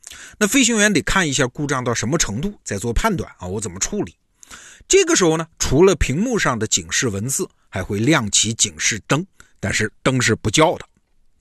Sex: male